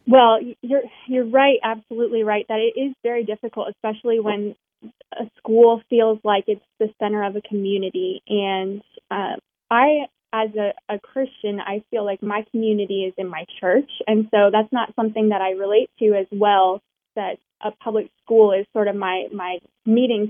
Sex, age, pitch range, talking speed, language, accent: female, 20-39, 205-235 Hz, 175 wpm, English, American